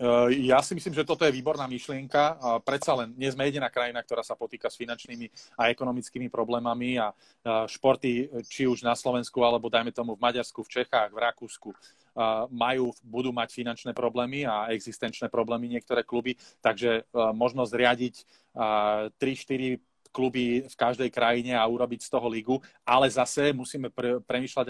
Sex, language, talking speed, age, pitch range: male, Slovak, 170 wpm, 30-49, 115-125 Hz